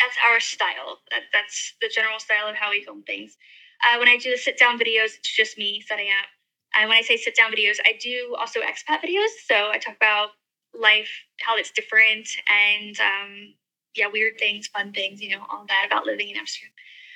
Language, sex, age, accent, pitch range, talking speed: English, female, 10-29, American, 220-325 Hz, 215 wpm